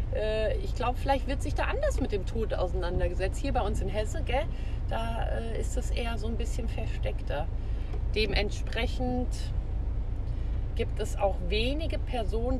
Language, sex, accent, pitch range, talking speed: German, female, German, 85-105 Hz, 150 wpm